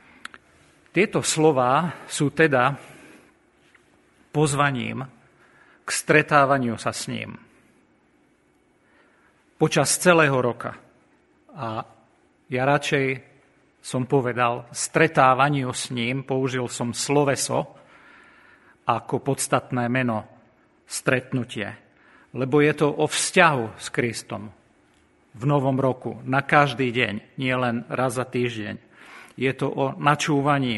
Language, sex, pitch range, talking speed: Slovak, male, 120-145 Hz, 95 wpm